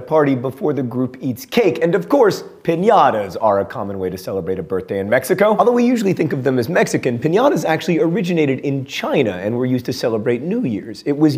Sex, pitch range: male, 115-160 Hz